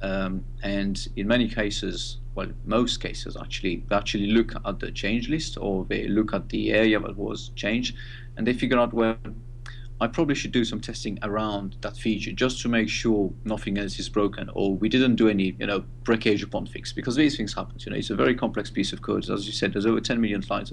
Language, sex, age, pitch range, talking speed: English, male, 40-59, 105-120 Hz, 225 wpm